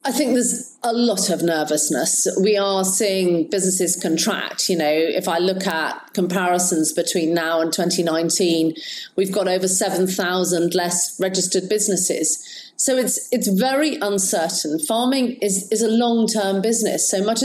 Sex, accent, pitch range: female, British, 180-220 Hz